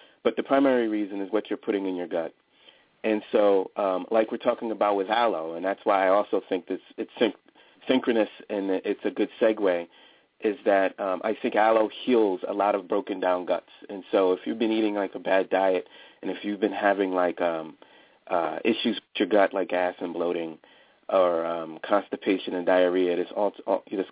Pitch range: 95-115 Hz